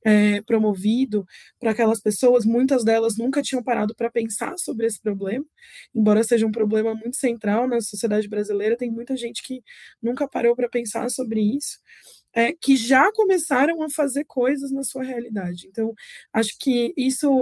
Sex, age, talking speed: female, 20-39, 160 wpm